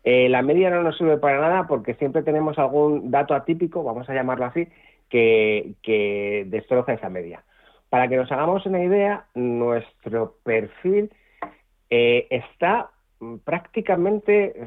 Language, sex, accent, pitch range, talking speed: Spanish, male, Spanish, 115-165 Hz, 140 wpm